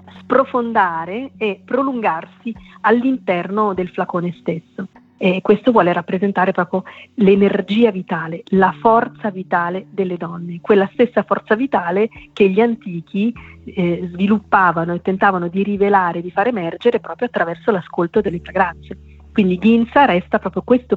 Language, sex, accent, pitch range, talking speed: Italian, female, native, 175-215 Hz, 130 wpm